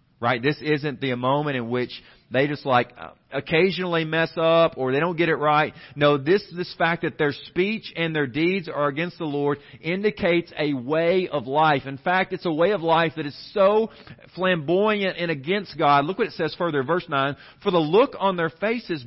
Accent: American